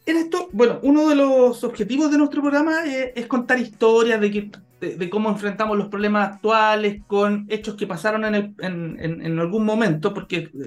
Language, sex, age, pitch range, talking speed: Spanish, male, 30-49, 175-235 Hz, 195 wpm